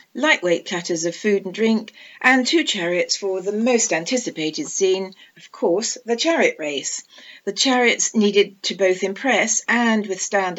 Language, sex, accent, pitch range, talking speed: English, female, British, 185-225 Hz, 155 wpm